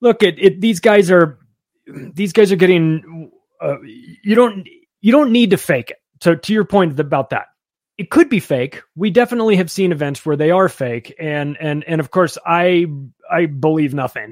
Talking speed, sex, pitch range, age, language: 200 wpm, male, 140-180 Hz, 30-49, English